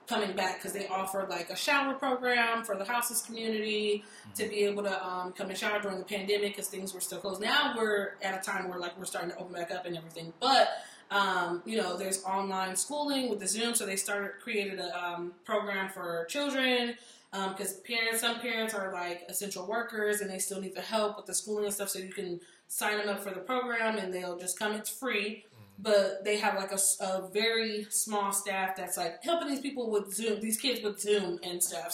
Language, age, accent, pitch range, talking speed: English, 20-39, American, 185-220 Hz, 225 wpm